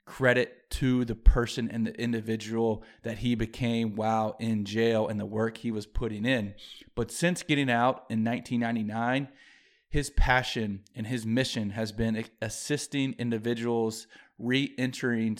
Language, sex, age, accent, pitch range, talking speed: English, male, 20-39, American, 110-125 Hz, 140 wpm